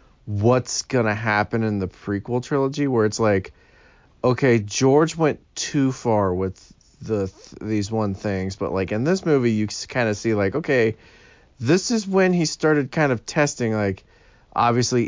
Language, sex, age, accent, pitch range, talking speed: English, male, 30-49, American, 100-125 Hz, 165 wpm